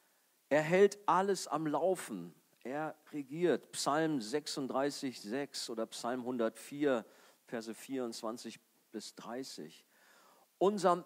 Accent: German